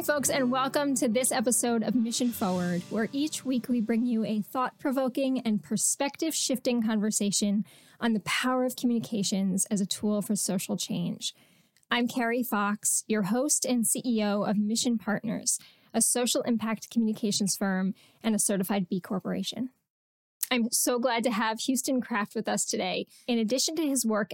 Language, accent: English, American